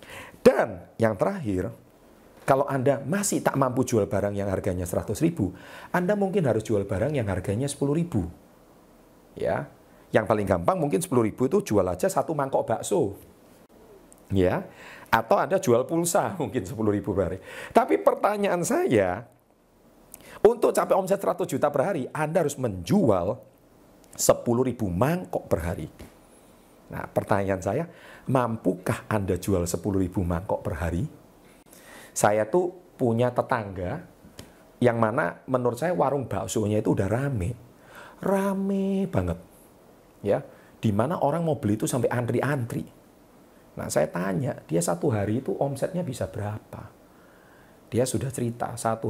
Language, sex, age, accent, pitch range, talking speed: Indonesian, male, 40-59, native, 100-145 Hz, 130 wpm